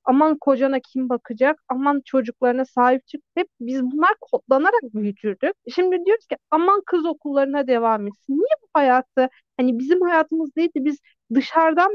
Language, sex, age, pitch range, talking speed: Turkish, female, 40-59, 250-335 Hz, 155 wpm